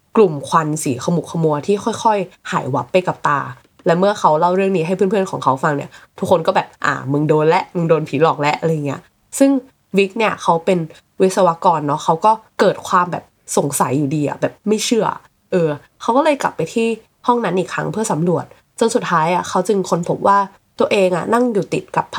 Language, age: Thai, 20-39